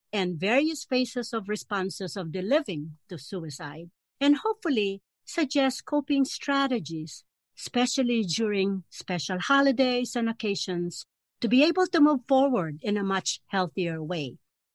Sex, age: female, 60-79